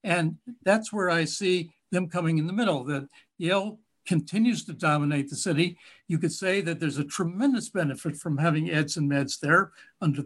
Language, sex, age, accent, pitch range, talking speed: English, male, 60-79, American, 155-195 Hz, 185 wpm